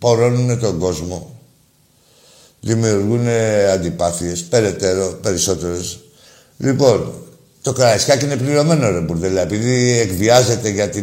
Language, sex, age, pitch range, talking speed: Greek, male, 60-79, 105-145 Hz, 100 wpm